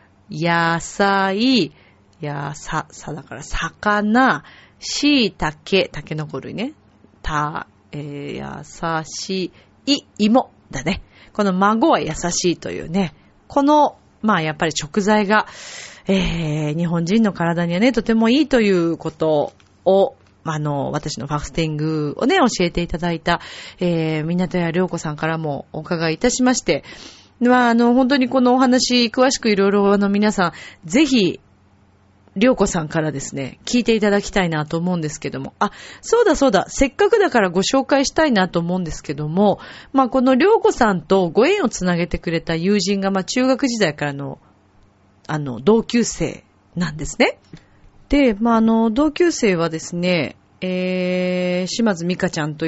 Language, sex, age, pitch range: Japanese, female, 30-49, 155-230 Hz